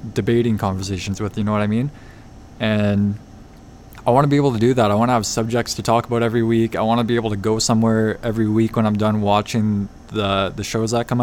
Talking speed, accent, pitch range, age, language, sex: 245 wpm, American, 105-120 Hz, 20-39, English, male